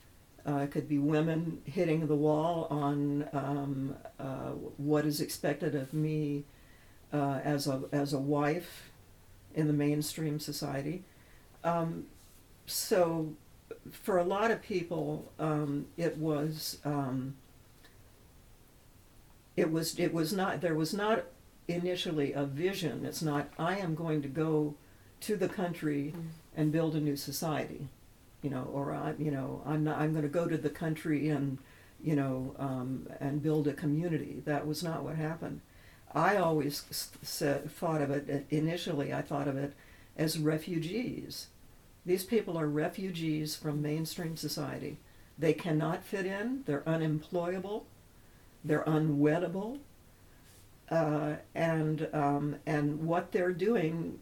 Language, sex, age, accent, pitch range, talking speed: English, female, 60-79, American, 145-165 Hz, 140 wpm